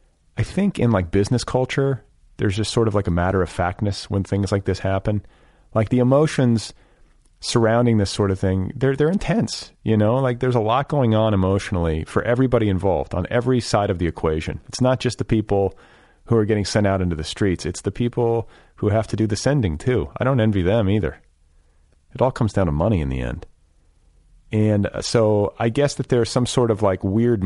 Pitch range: 90-120 Hz